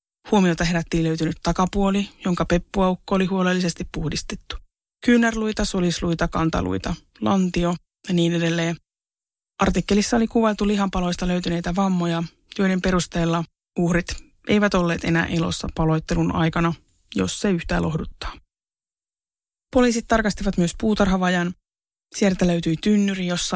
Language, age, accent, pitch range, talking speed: Finnish, 20-39, native, 170-200 Hz, 110 wpm